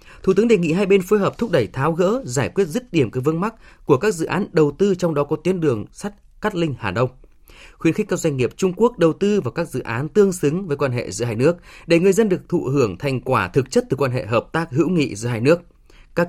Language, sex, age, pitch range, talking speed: Vietnamese, male, 20-39, 130-185 Hz, 285 wpm